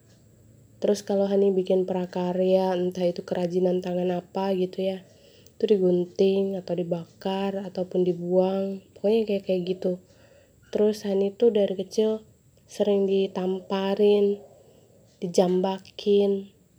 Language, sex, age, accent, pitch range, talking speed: Indonesian, female, 20-39, native, 180-200 Hz, 105 wpm